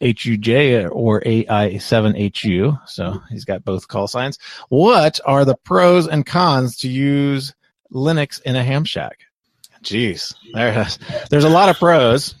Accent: American